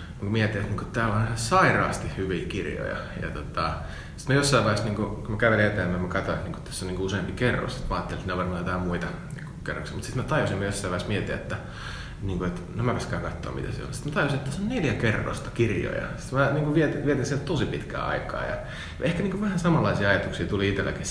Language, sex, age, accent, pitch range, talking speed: Finnish, male, 30-49, native, 95-125 Hz, 220 wpm